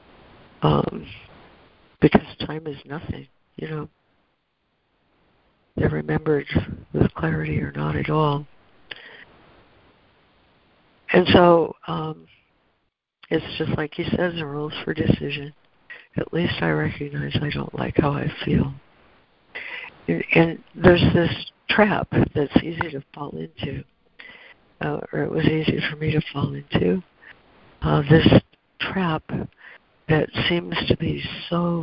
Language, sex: English, female